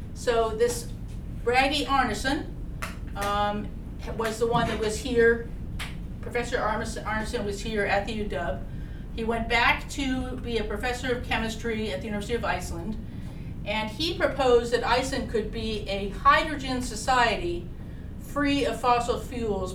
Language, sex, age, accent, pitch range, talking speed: English, female, 40-59, American, 210-265 Hz, 140 wpm